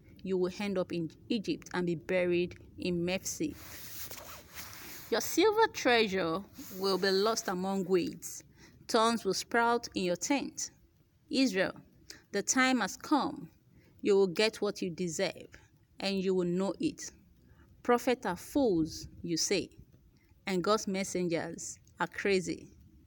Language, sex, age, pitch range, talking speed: English, female, 30-49, 185-255 Hz, 135 wpm